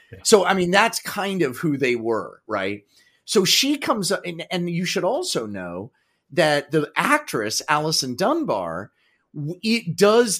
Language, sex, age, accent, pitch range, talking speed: English, male, 30-49, American, 130-185 Hz, 155 wpm